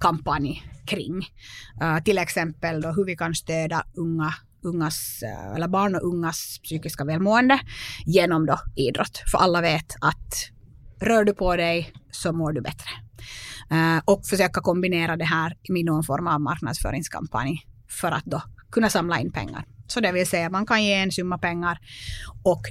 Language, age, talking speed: Swedish, 30-49, 170 wpm